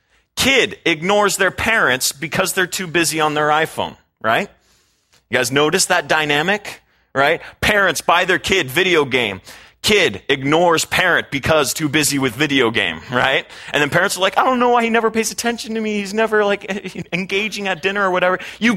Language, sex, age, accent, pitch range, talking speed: English, male, 30-49, American, 145-205 Hz, 185 wpm